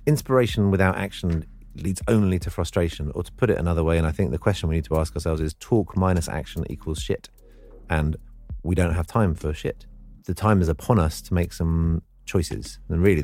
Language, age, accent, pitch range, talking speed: English, 30-49, British, 80-105 Hz, 215 wpm